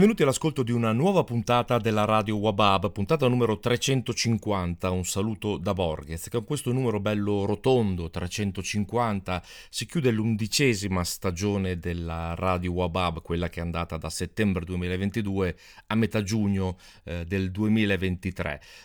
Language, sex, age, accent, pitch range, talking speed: Italian, male, 40-59, native, 85-105 Hz, 135 wpm